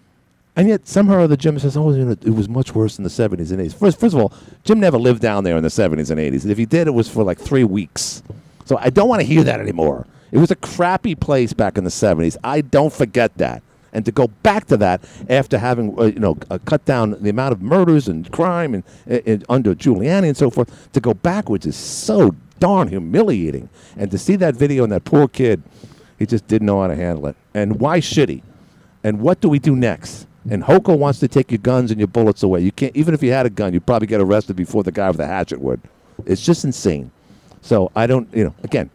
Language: English